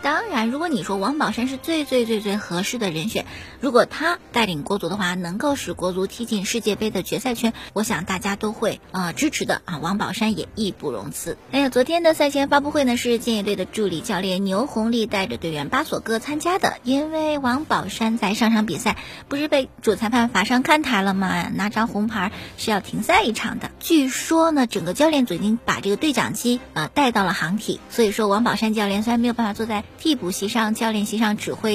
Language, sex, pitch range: Chinese, male, 200-270 Hz